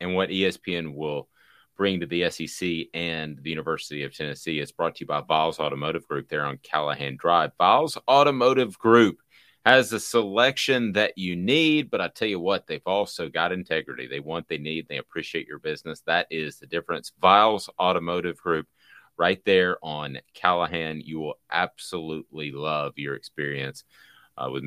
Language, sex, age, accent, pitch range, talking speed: English, male, 30-49, American, 80-110 Hz, 170 wpm